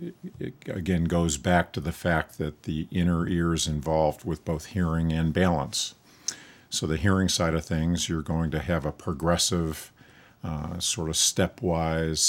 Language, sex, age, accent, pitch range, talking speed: English, male, 50-69, American, 80-90 Hz, 165 wpm